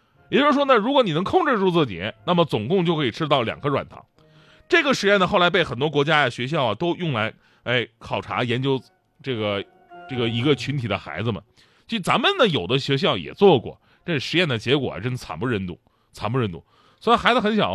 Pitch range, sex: 115-180 Hz, male